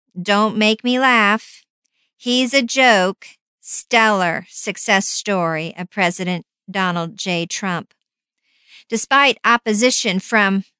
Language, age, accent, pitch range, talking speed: English, 50-69, American, 200-245 Hz, 100 wpm